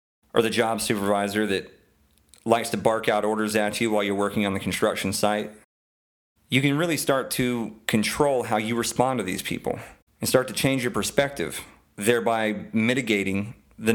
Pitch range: 100-115 Hz